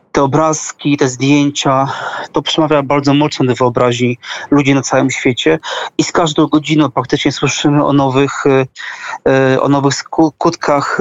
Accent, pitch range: native, 135-155 Hz